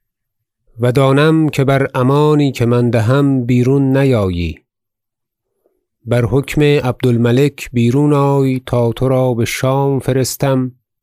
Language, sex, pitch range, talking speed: Persian, male, 115-135 Hz, 115 wpm